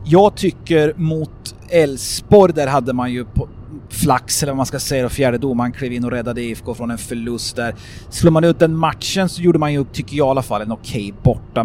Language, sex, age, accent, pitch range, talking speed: English, male, 30-49, Swedish, 120-145 Hz, 225 wpm